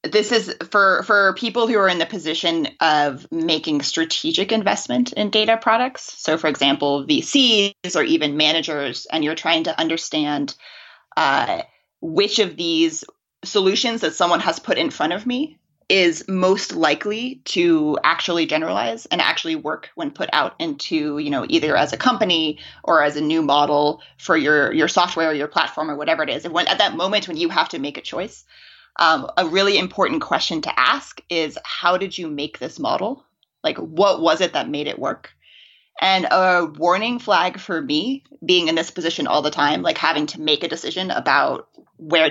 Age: 30-49